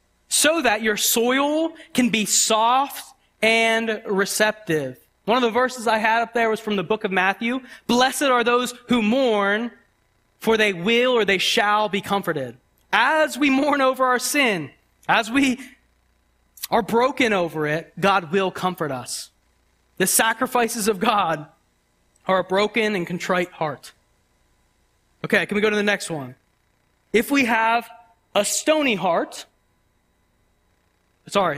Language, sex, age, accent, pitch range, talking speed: English, male, 20-39, American, 180-245 Hz, 145 wpm